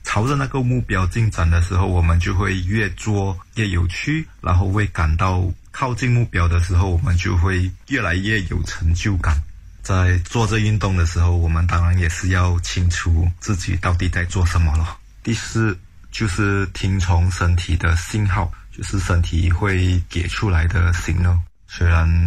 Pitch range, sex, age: 85-100 Hz, male, 20-39